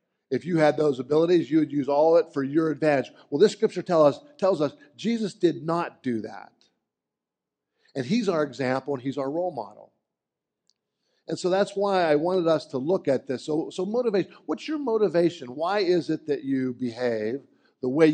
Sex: male